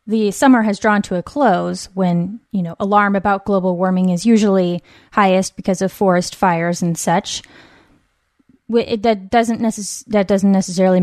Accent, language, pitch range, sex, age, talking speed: American, English, 190-225 Hz, female, 20-39, 165 wpm